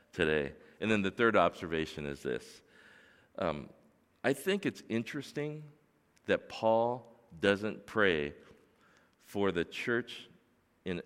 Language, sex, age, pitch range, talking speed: English, male, 50-69, 95-135 Hz, 115 wpm